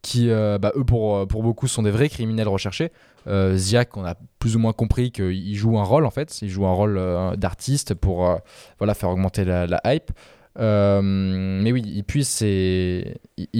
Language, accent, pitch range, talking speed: French, French, 100-125 Hz, 205 wpm